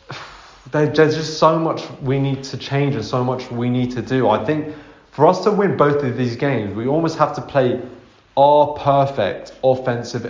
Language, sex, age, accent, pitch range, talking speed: English, male, 20-39, British, 120-140 Hz, 190 wpm